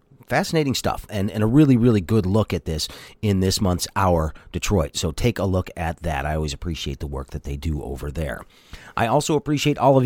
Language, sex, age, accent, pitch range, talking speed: English, male, 40-59, American, 85-125 Hz, 220 wpm